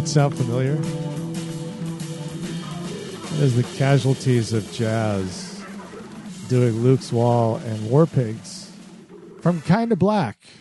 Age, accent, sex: 50-69, American, male